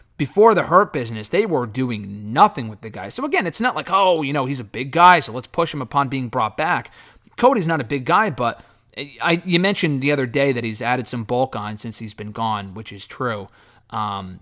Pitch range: 115-155 Hz